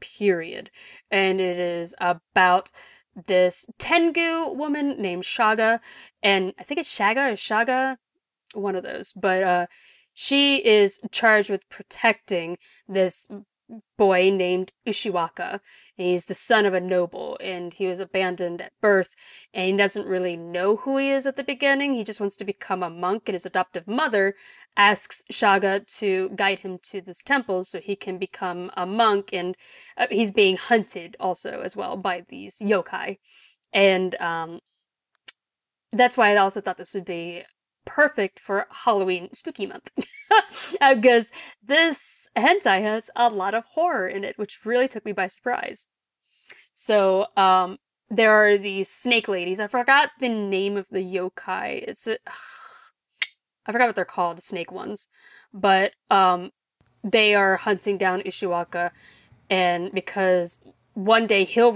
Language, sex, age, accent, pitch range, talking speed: English, female, 30-49, American, 185-235 Hz, 155 wpm